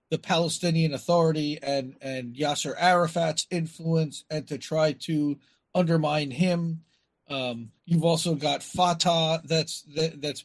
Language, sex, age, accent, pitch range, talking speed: English, male, 40-59, American, 155-200 Hz, 125 wpm